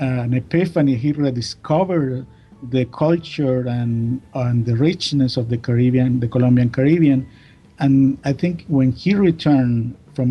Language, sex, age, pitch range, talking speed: English, male, 50-69, 120-140 Hz, 135 wpm